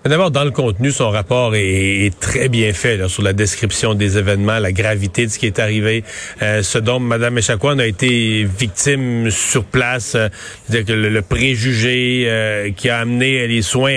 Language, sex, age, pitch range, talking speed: French, male, 40-59, 115-155 Hz, 200 wpm